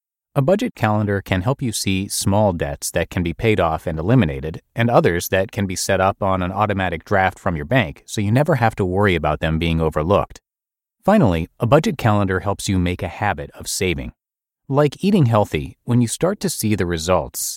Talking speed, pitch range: 210 wpm, 85-115 Hz